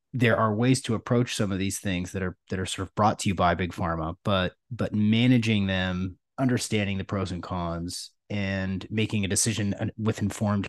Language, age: English, 30-49